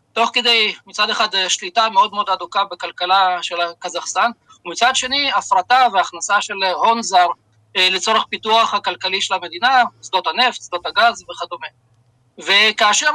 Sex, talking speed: male, 130 wpm